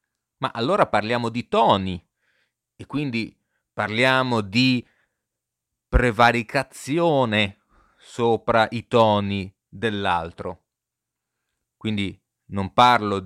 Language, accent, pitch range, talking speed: Italian, native, 100-130 Hz, 75 wpm